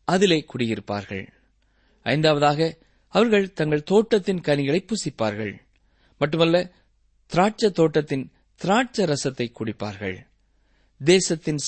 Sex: male